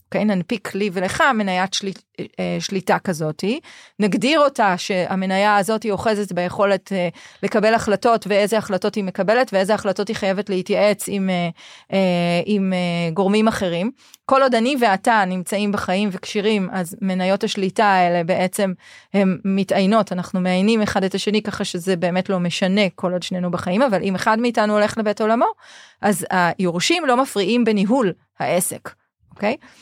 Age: 30-49